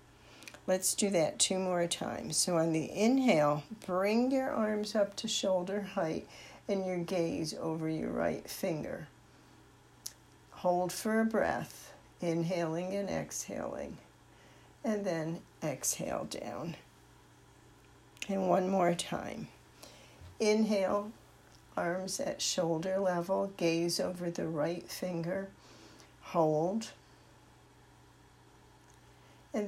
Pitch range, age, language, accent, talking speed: 155-200 Hz, 50-69, English, American, 105 wpm